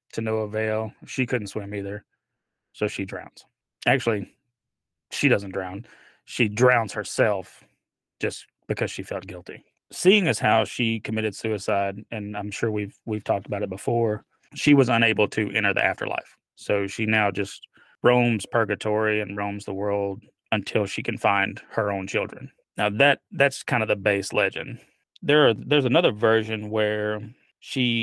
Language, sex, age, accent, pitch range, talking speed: English, male, 20-39, American, 100-115 Hz, 160 wpm